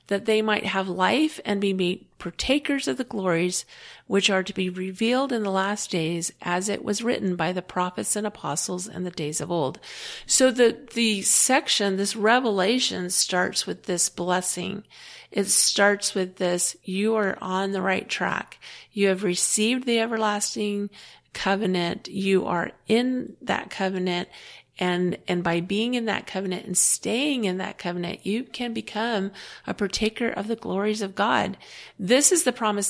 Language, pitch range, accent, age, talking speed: English, 185-225 Hz, American, 40-59, 170 wpm